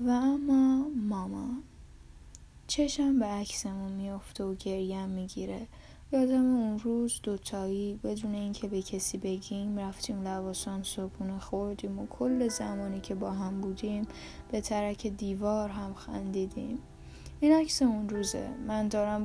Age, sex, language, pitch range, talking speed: 10-29, female, Persian, 195-220 Hz, 130 wpm